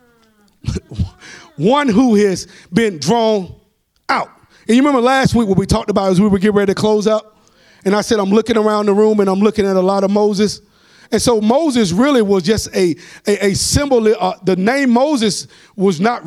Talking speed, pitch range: 205 wpm, 200-245 Hz